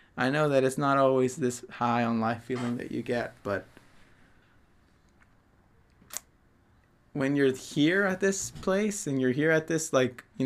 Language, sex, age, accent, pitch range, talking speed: English, male, 20-39, American, 120-145 Hz, 160 wpm